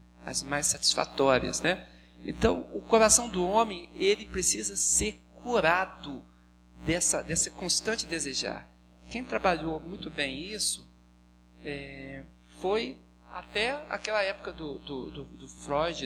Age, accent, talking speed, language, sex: 40-59, Brazilian, 110 wpm, Portuguese, male